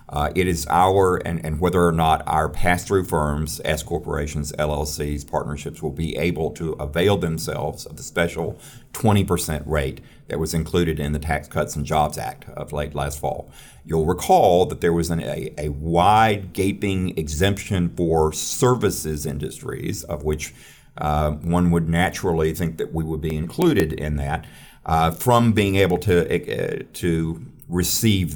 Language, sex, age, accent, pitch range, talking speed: English, male, 50-69, American, 80-95 Hz, 160 wpm